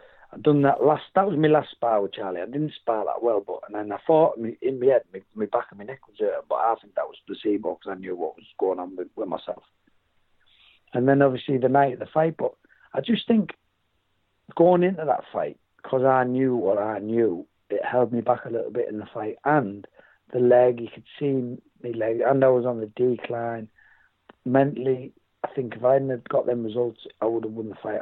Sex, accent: male, British